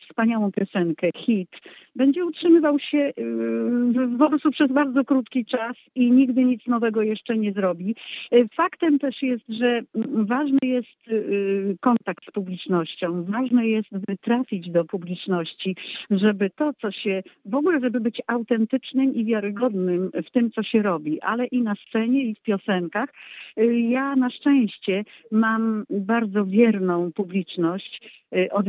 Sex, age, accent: female, 50-69, native